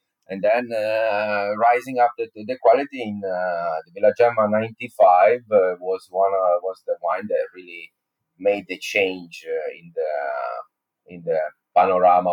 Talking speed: 165 wpm